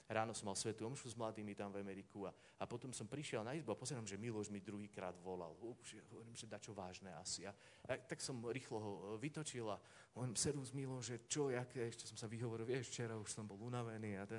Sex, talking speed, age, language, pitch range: male, 240 wpm, 40-59, Slovak, 115-150 Hz